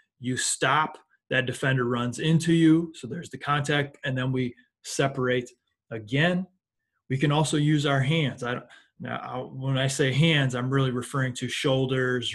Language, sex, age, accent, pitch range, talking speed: English, male, 20-39, American, 125-140 Hz, 165 wpm